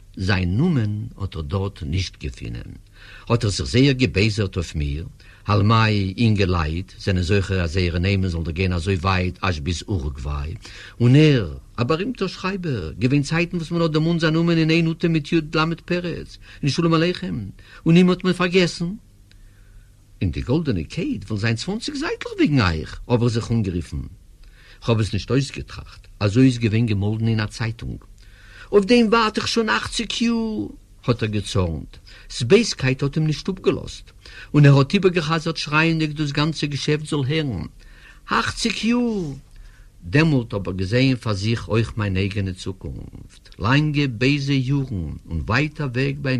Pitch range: 100-155 Hz